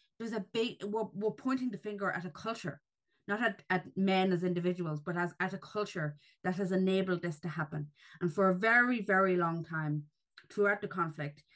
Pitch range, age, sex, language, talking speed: 160-195 Hz, 20-39, female, English, 195 wpm